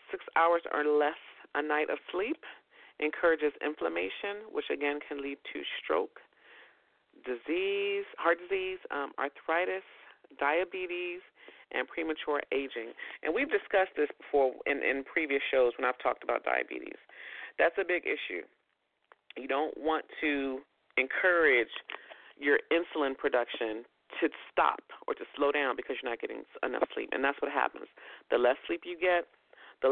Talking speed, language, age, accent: 145 wpm, English, 40-59, American